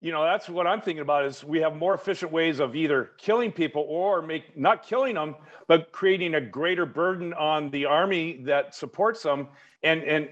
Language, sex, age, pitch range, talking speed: English, male, 50-69, 145-185 Hz, 205 wpm